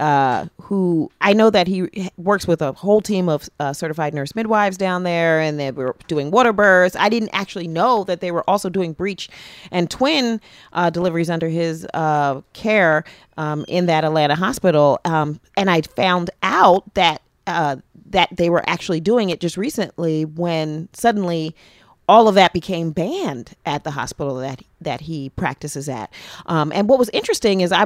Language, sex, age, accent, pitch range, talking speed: English, female, 40-59, American, 150-185 Hz, 180 wpm